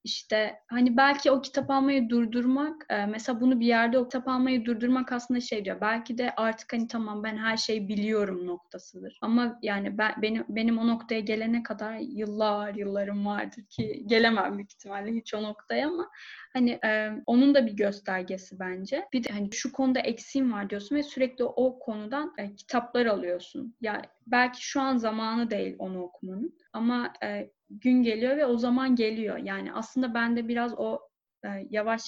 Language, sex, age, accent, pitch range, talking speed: Turkish, female, 10-29, native, 210-245 Hz, 175 wpm